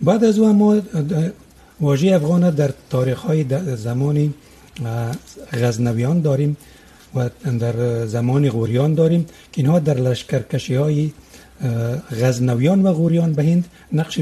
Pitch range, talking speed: 125-165 Hz, 125 wpm